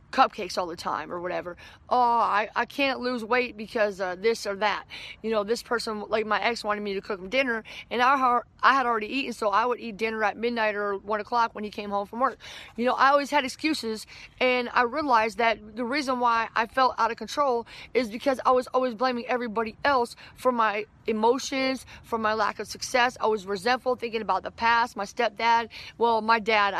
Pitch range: 215-255 Hz